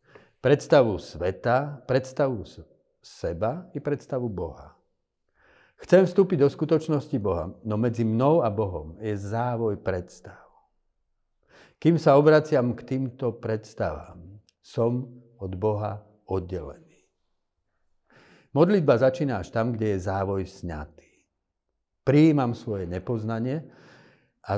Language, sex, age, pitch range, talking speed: Slovak, male, 50-69, 95-130 Hz, 105 wpm